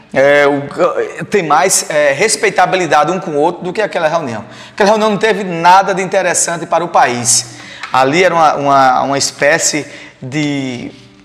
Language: Portuguese